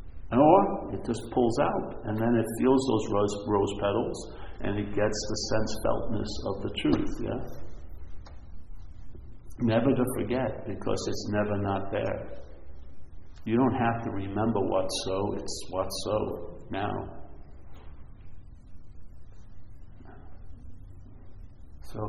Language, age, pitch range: English, 50-69, 95-115 Hz